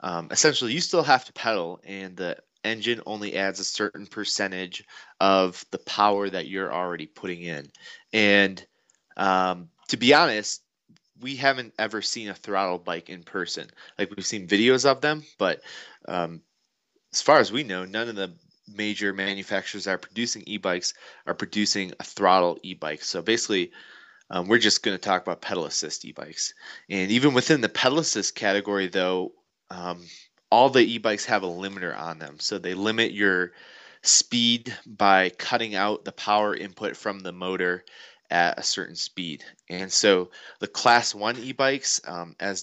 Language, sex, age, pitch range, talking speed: English, male, 20-39, 90-115 Hz, 165 wpm